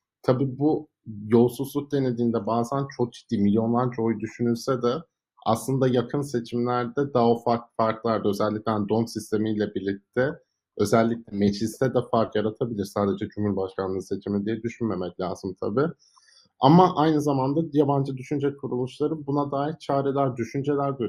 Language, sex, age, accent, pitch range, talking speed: Turkish, male, 50-69, native, 105-130 Hz, 130 wpm